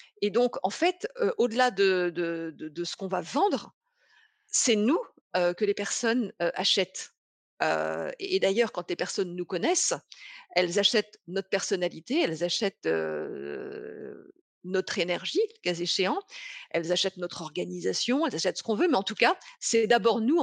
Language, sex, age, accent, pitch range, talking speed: French, female, 50-69, French, 180-255 Hz, 165 wpm